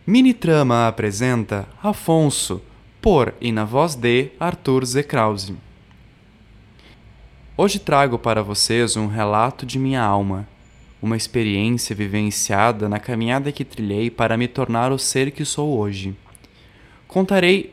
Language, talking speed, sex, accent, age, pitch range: Portuguese, 120 wpm, male, Brazilian, 20-39, 110-140 Hz